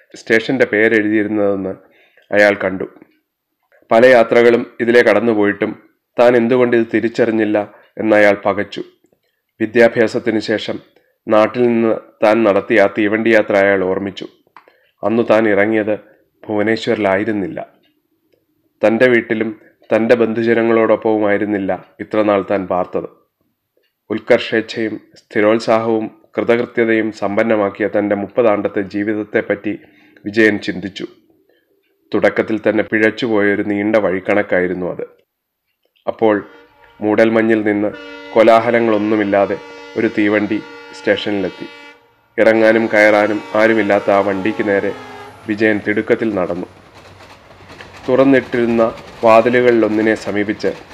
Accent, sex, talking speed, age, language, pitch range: native, male, 85 wpm, 30-49, Malayalam, 100-115 Hz